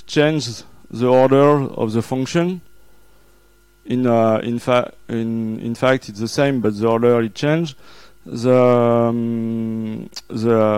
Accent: French